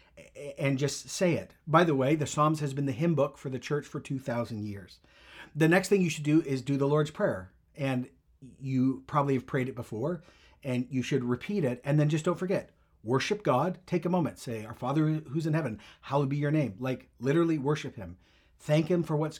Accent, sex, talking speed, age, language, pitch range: American, male, 220 wpm, 40-59, English, 125-160 Hz